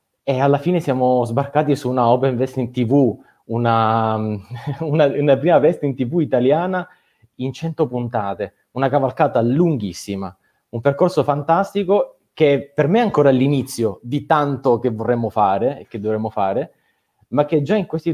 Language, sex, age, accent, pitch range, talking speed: Italian, male, 30-49, native, 120-175 Hz, 155 wpm